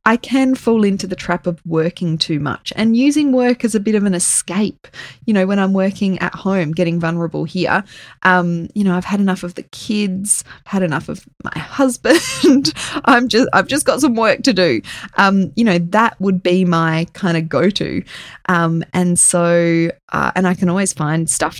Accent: Australian